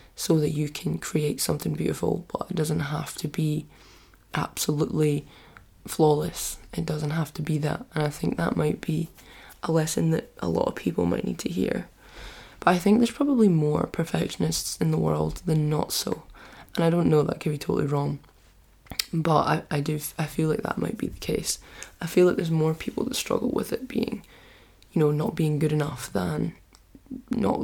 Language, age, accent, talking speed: English, 20-39, British, 200 wpm